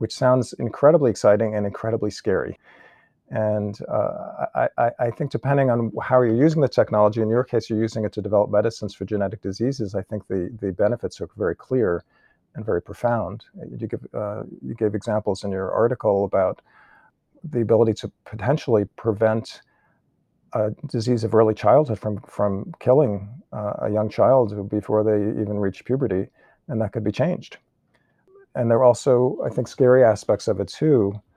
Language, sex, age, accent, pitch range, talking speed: English, male, 50-69, American, 100-120 Hz, 170 wpm